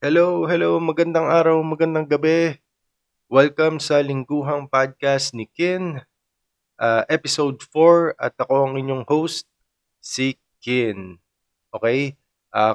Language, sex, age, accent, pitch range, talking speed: Filipino, male, 20-39, native, 105-130 Hz, 115 wpm